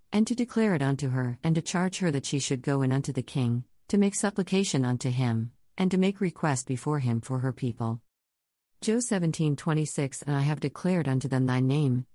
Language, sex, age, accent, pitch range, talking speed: English, female, 50-69, American, 130-170 Hz, 205 wpm